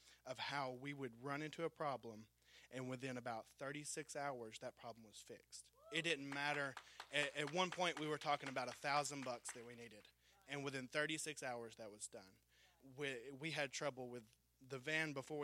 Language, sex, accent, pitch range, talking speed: English, male, American, 115-145 Hz, 190 wpm